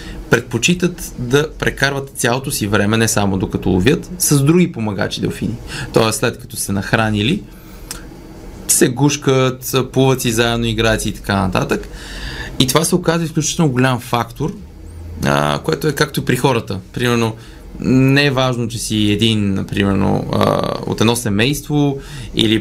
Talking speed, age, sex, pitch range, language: 145 wpm, 20-39, male, 100-130 Hz, Bulgarian